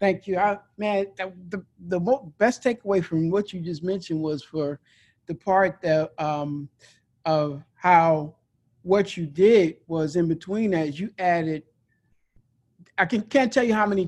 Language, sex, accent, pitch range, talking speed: English, male, American, 165-210 Hz, 160 wpm